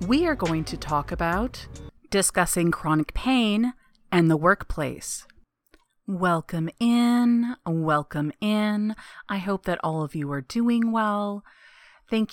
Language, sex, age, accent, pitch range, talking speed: English, female, 30-49, American, 180-255 Hz, 125 wpm